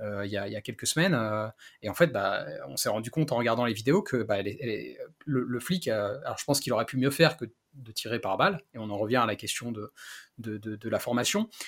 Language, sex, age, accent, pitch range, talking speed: French, male, 30-49, French, 120-155 Hz, 290 wpm